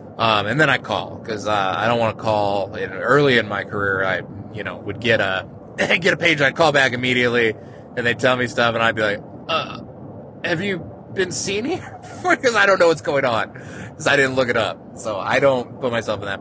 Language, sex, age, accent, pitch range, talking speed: English, male, 20-39, American, 110-140 Hz, 240 wpm